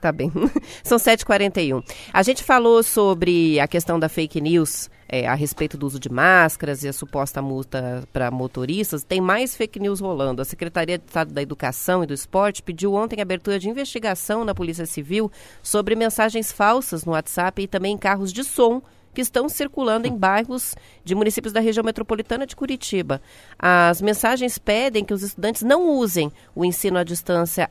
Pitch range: 165-225 Hz